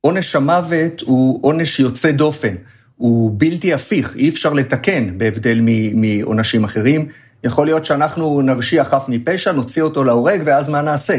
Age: 50-69